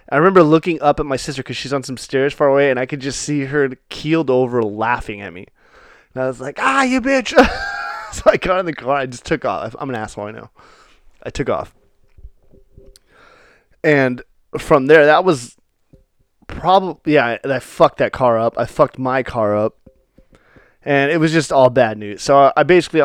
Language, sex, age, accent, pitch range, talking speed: English, male, 20-39, American, 120-150 Hz, 205 wpm